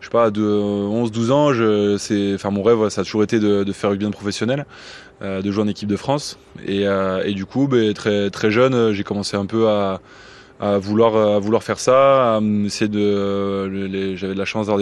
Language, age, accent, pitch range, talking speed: French, 20-39, French, 100-110 Hz, 240 wpm